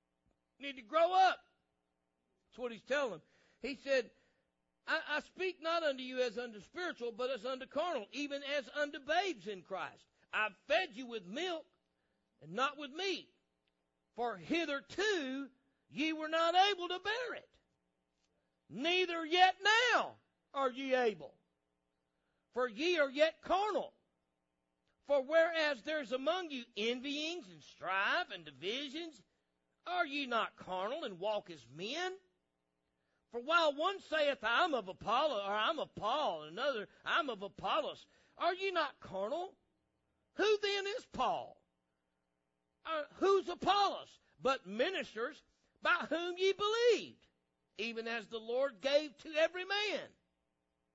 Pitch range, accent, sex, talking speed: 200-335 Hz, American, male, 140 wpm